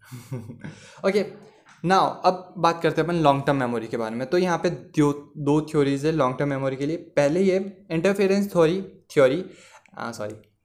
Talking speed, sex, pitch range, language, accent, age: 185 wpm, male, 140-175 Hz, Hindi, native, 20-39